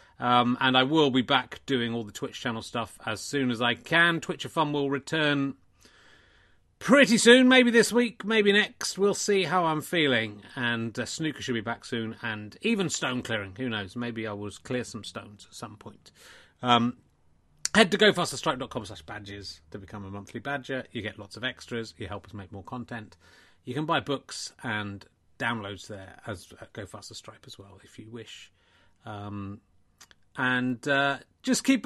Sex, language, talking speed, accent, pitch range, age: male, English, 190 wpm, British, 105-160 Hz, 30-49